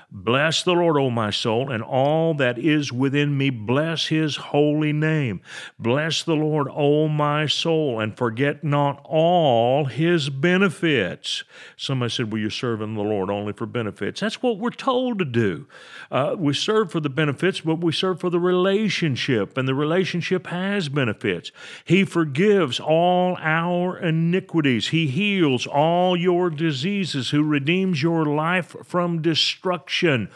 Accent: American